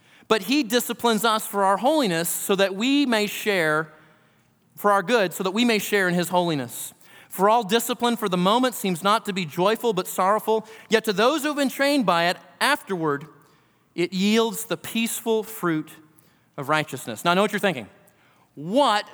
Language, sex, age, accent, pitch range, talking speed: English, male, 30-49, American, 175-240 Hz, 190 wpm